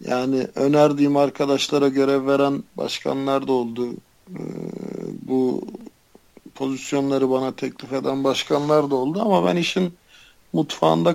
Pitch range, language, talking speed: 125-140 Hz, Turkish, 110 wpm